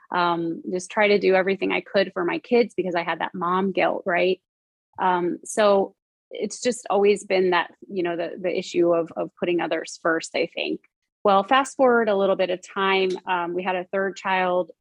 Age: 30-49